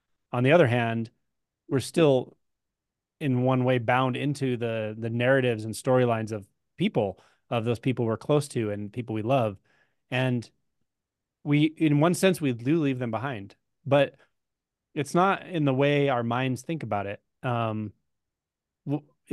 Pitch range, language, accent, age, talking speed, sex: 110-145 Hz, English, American, 30-49, 160 wpm, male